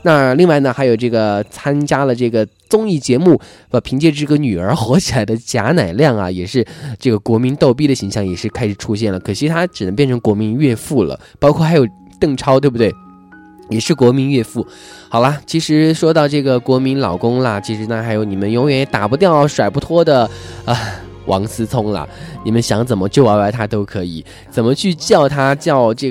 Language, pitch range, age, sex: Chinese, 110-145 Hz, 20-39, male